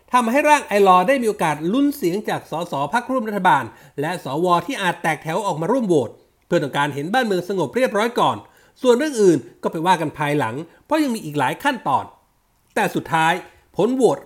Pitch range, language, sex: 160-235 Hz, Thai, male